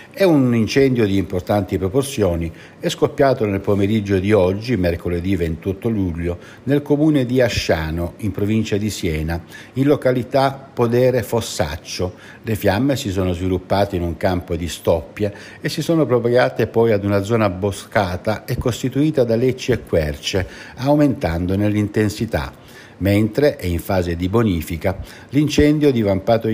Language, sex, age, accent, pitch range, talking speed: Italian, male, 60-79, native, 90-120 Hz, 140 wpm